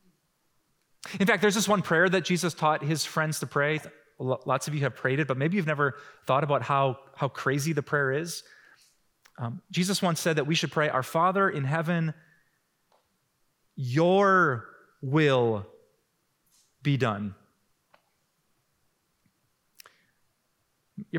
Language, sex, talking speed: English, male, 140 wpm